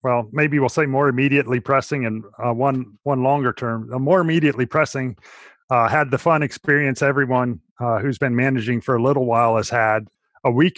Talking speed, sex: 190 wpm, male